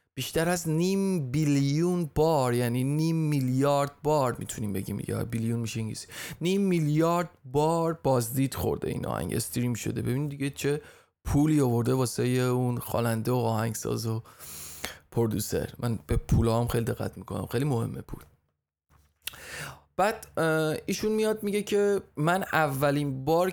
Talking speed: 140 wpm